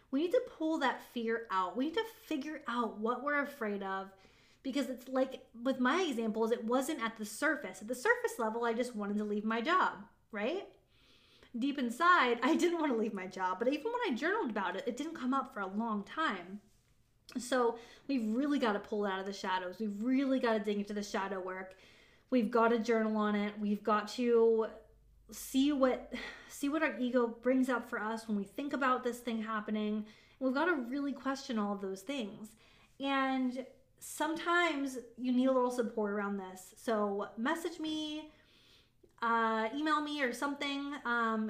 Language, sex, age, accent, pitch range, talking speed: English, female, 20-39, American, 215-275 Hz, 195 wpm